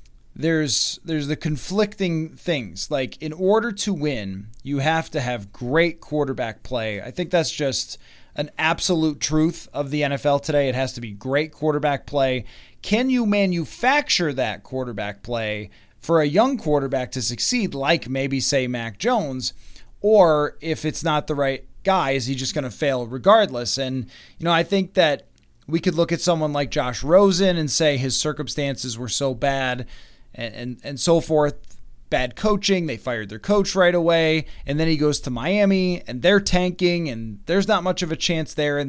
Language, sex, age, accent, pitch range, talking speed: English, male, 20-39, American, 130-180 Hz, 180 wpm